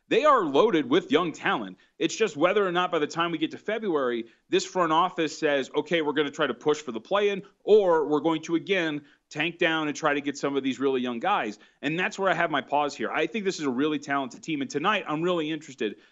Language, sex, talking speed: English, male, 260 wpm